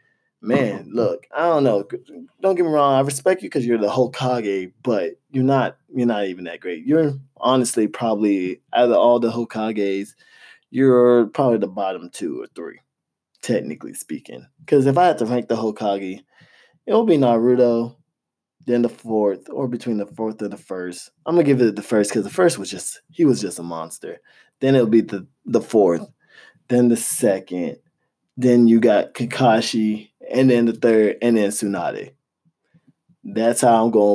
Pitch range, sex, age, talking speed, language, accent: 105-140 Hz, male, 20-39, 185 wpm, English, American